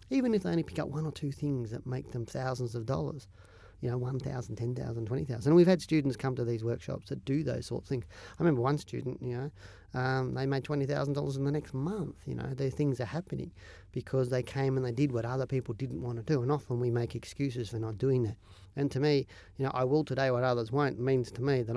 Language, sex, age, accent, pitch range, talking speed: English, male, 40-59, Australian, 115-135 Hz, 255 wpm